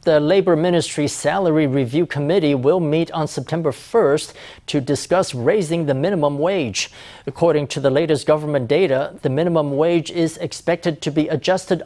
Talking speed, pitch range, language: 155 wpm, 140-170 Hz, English